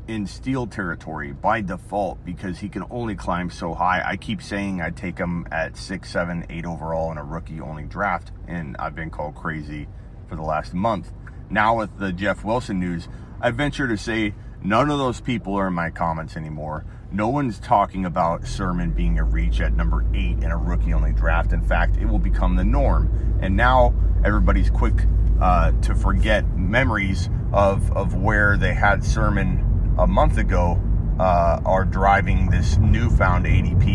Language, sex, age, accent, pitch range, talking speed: English, male, 30-49, American, 85-105 Hz, 175 wpm